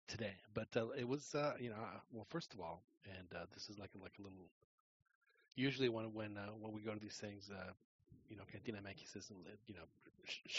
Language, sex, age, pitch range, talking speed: English, male, 30-49, 100-115 Hz, 225 wpm